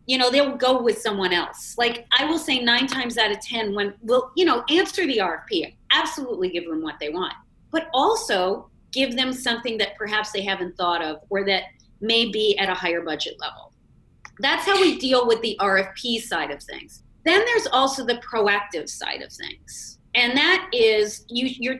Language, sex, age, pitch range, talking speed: English, female, 30-49, 205-270 Hz, 195 wpm